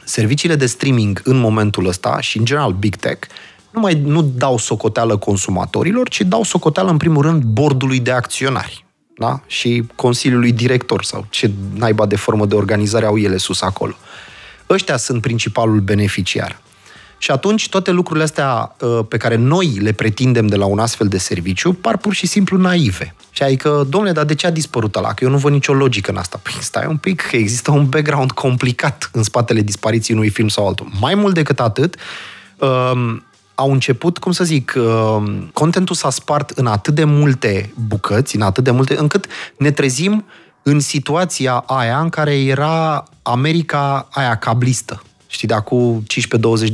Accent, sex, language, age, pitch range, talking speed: native, male, Romanian, 30-49, 110-155 Hz, 175 wpm